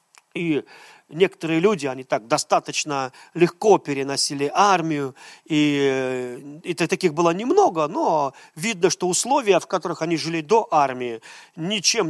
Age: 40-59